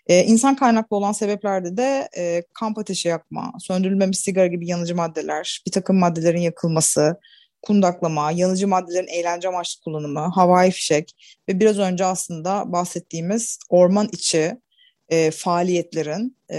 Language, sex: Turkish, female